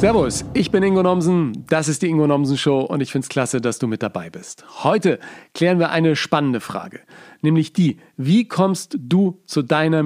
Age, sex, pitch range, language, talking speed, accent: 40-59, male, 140-175 Hz, German, 205 wpm, German